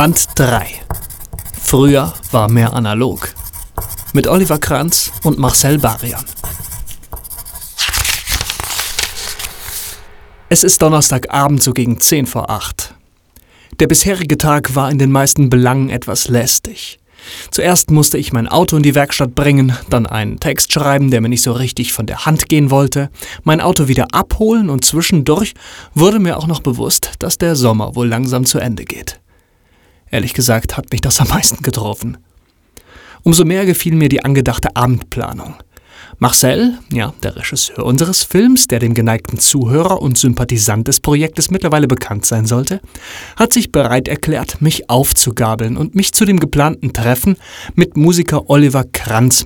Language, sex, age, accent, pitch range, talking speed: German, male, 30-49, German, 120-155 Hz, 145 wpm